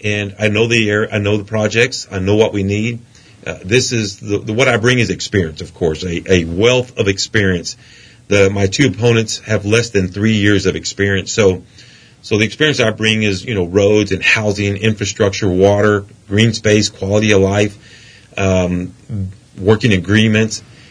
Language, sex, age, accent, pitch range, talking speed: English, male, 40-59, American, 100-115 Hz, 185 wpm